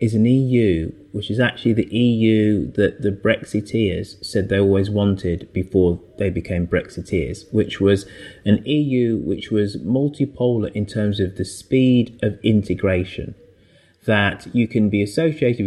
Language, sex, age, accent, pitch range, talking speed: English, male, 30-49, British, 95-115 Hz, 145 wpm